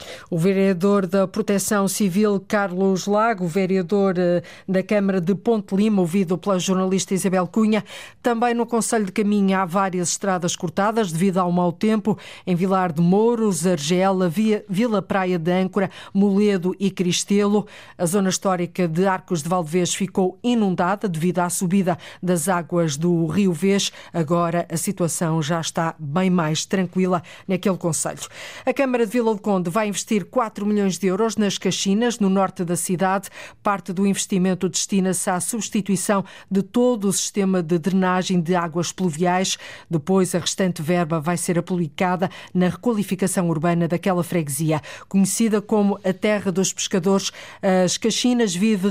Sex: female